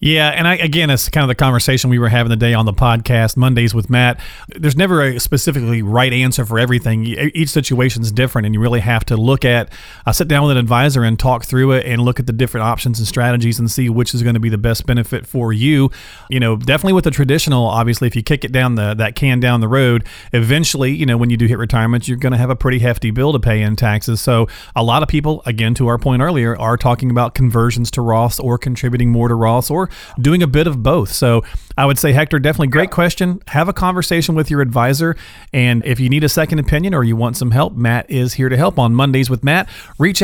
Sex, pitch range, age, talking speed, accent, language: male, 120-150 Hz, 40-59, 255 wpm, American, English